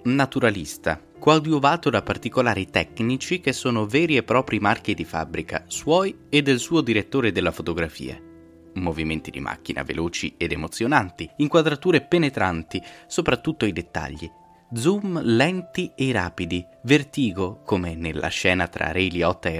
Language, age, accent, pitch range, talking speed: Italian, 20-39, native, 85-120 Hz, 130 wpm